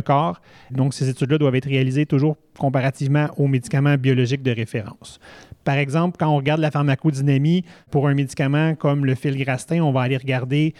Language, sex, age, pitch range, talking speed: French, male, 30-49, 130-150 Hz, 180 wpm